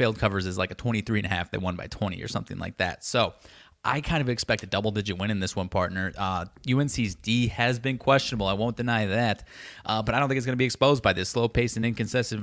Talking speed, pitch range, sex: 250 wpm, 100-125 Hz, male